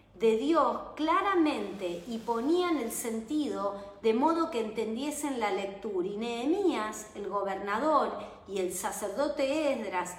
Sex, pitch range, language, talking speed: female, 215-295 Hz, Spanish, 125 wpm